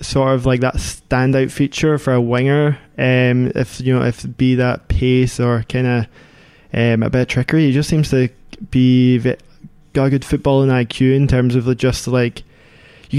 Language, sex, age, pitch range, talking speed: English, male, 20-39, 125-145 Hz, 205 wpm